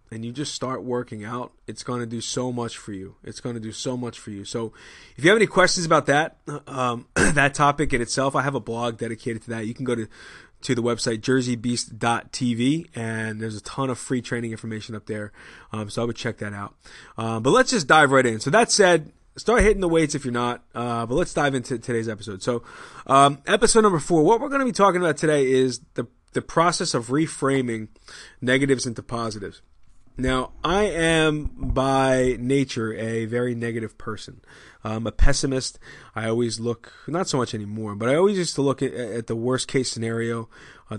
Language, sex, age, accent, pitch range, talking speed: English, male, 20-39, American, 115-140 Hz, 210 wpm